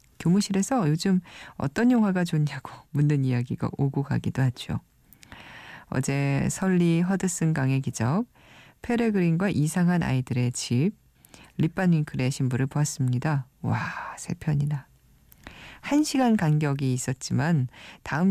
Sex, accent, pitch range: female, native, 130-180 Hz